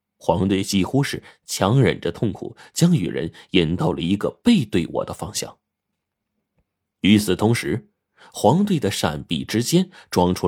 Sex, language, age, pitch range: male, Chinese, 30-49, 90-140 Hz